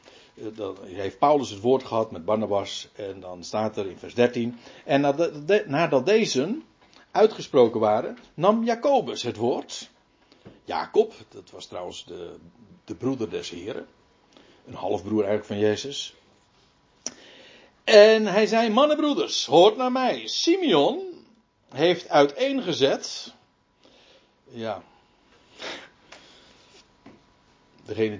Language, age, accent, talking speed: Dutch, 60-79, Dutch, 105 wpm